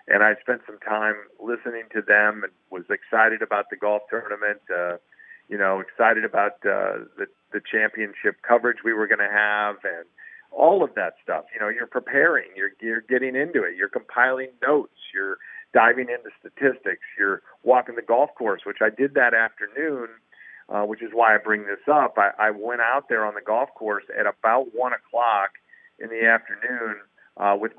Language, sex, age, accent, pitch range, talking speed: English, male, 50-69, American, 105-125 Hz, 190 wpm